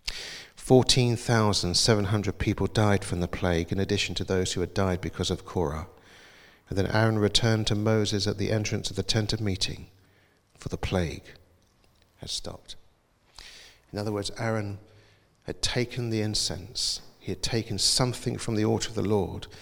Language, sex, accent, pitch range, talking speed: English, male, British, 95-110 Hz, 160 wpm